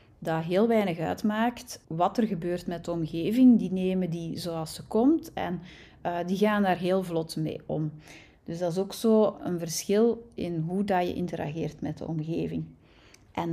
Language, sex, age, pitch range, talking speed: Dutch, female, 30-49, 170-210 Hz, 180 wpm